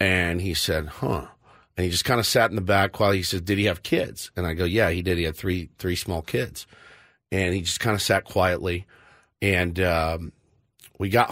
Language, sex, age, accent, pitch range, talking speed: English, male, 40-59, American, 90-115 Hz, 230 wpm